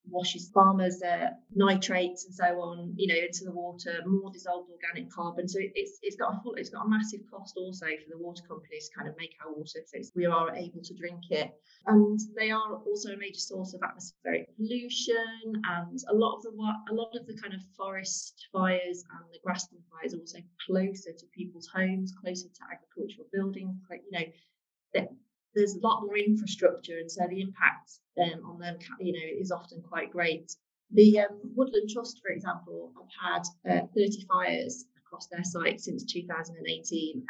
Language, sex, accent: English, female, British